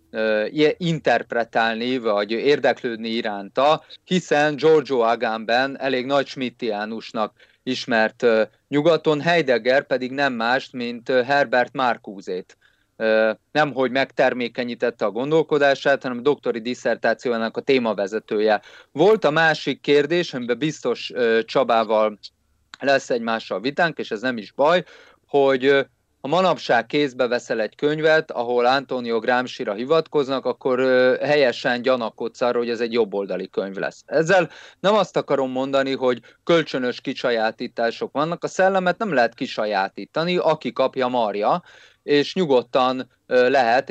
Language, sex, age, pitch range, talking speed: Hungarian, male, 30-49, 115-150 Hz, 115 wpm